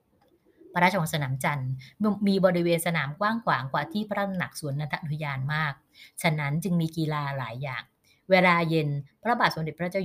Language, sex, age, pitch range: Thai, female, 30-49, 140-185 Hz